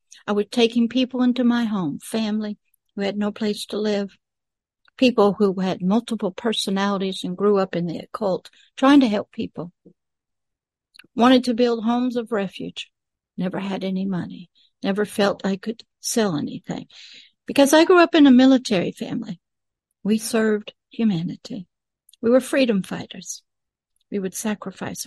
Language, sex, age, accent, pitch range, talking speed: English, female, 60-79, American, 195-240 Hz, 150 wpm